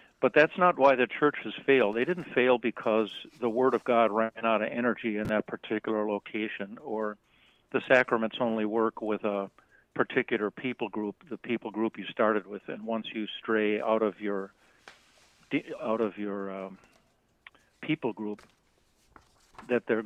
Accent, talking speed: American, 160 wpm